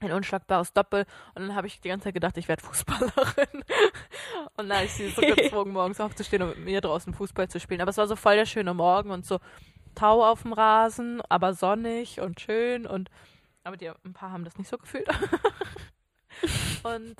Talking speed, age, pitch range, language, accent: 205 wpm, 20-39, 180-215 Hz, German, German